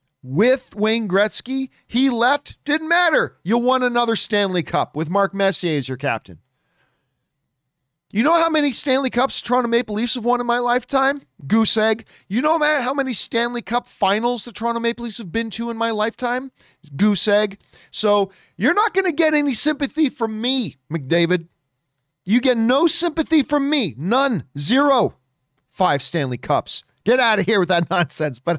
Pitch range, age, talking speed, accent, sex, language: 150-240 Hz, 40-59, 175 wpm, American, male, English